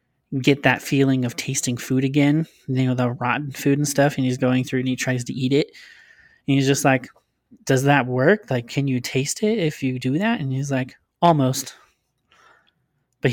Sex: male